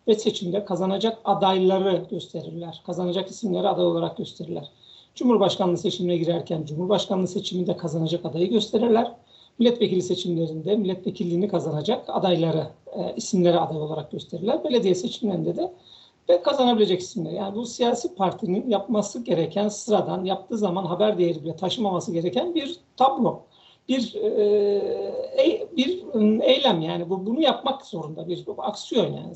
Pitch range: 180-230 Hz